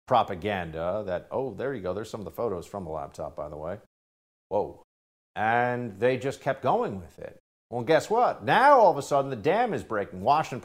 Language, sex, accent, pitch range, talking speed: English, male, American, 95-165 Hz, 215 wpm